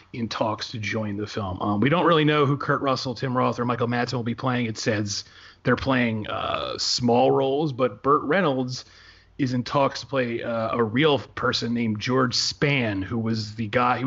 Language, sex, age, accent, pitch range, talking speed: English, male, 30-49, American, 115-135 Hz, 210 wpm